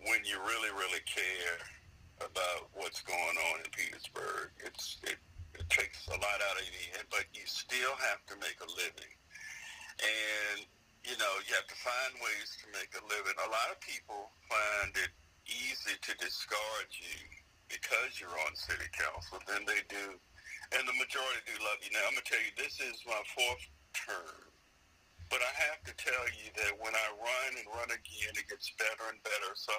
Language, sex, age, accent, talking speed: English, male, 50-69, American, 190 wpm